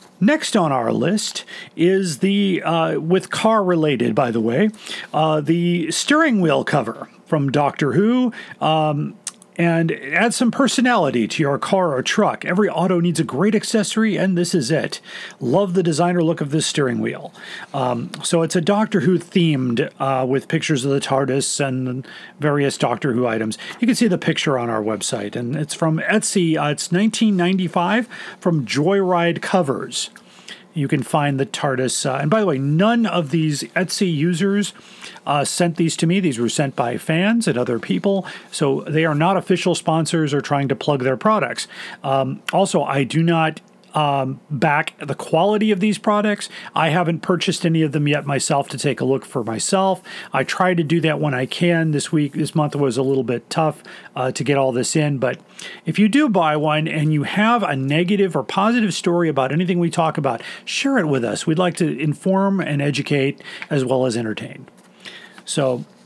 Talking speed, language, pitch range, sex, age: 190 wpm, English, 140-190 Hz, male, 40-59